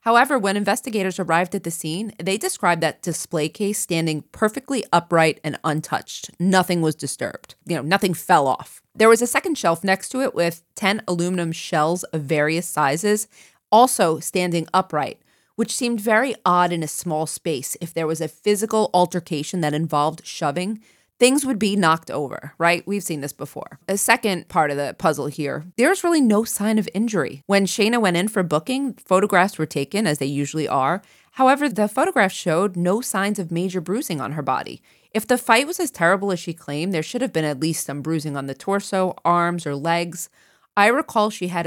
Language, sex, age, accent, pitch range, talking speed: English, female, 30-49, American, 160-205 Hz, 195 wpm